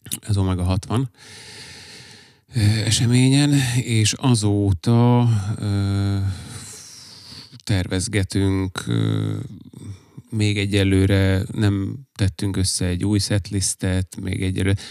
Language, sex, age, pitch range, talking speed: Hungarian, male, 30-49, 95-115 Hz, 85 wpm